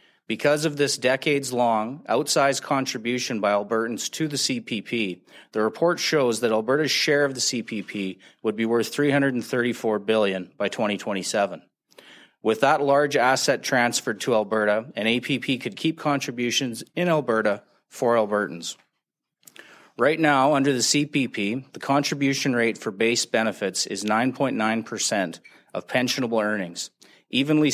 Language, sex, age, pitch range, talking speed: English, male, 30-49, 110-145 Hz, 130 wpm